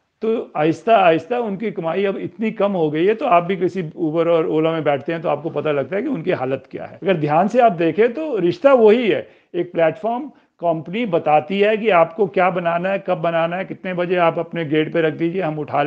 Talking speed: 240 wpm